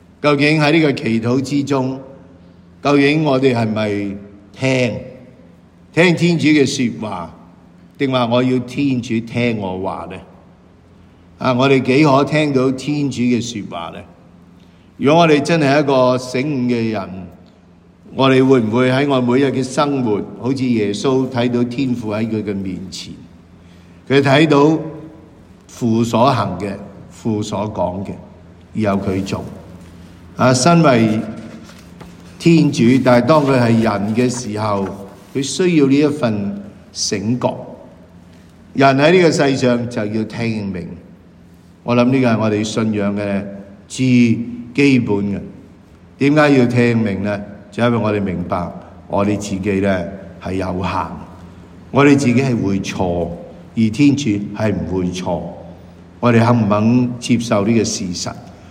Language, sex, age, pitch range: English, male, 50-69, 90-130 Hz